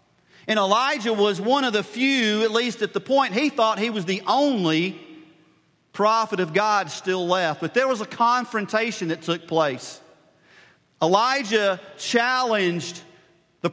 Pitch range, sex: 180-235 Hz, male